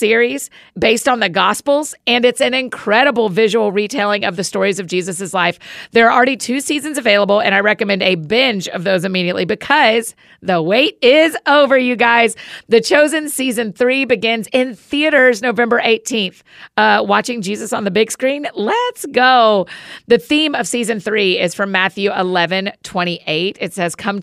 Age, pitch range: 40-59, 185-245 Hz